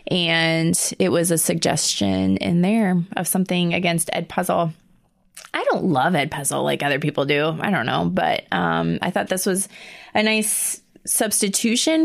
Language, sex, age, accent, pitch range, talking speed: English, female, 20-39, American, 165-210 Hz, 165 wpm